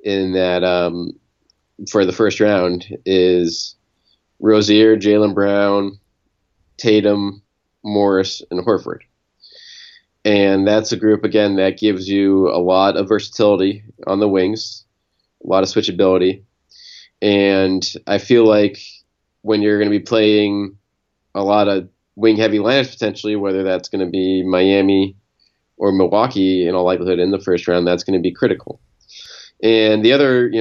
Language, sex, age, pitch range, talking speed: English, male, 20-39, 95-110 Hz, 145 wpm